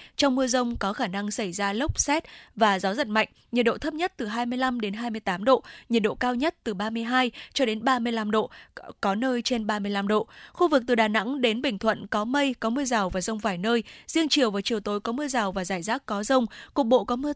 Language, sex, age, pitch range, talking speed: Vietnamese, female, 10-29, 215-275 Hz, 250 wpm